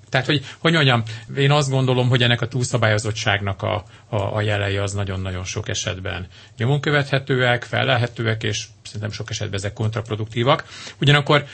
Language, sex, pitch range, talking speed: Hungarian, male, 105-125 Hz, 145 wpm